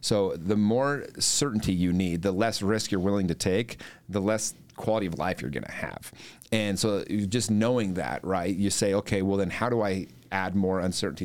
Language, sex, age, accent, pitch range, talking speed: English, male, 30-49, American, 95-110 Hz, 205 wpm